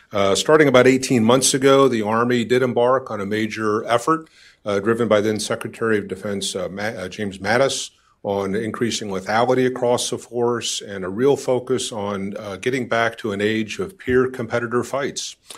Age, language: 40-59, English